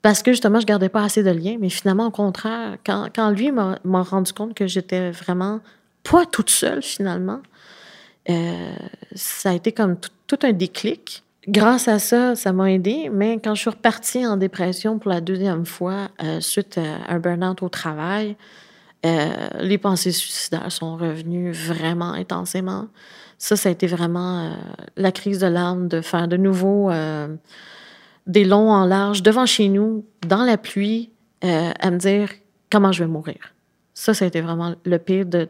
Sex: female